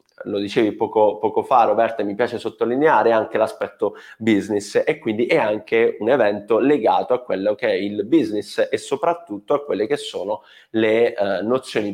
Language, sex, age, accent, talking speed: Italian, male, 30-49, native, 170 wpm